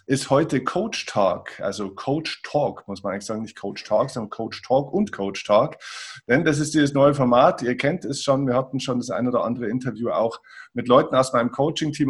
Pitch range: 120-140 Hz